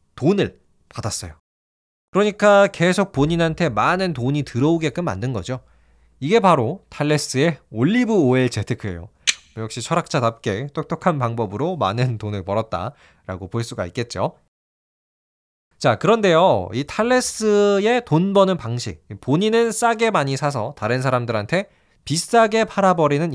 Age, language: 20-39, Korean